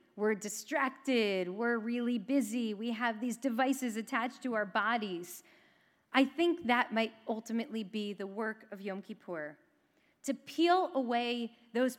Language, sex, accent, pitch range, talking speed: English, female, American, 225-290 Hz, 140 wpm